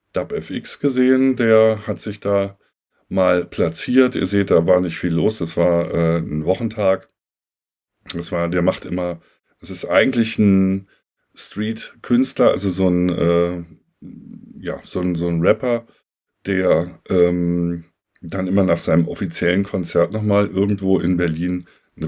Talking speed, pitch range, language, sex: 140 wpm, 85-100 Hz, German, male